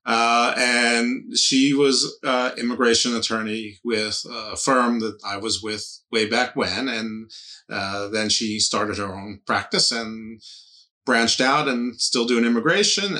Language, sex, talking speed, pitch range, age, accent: English, male, 145 wpm, 105-135 Hz, 30-49, American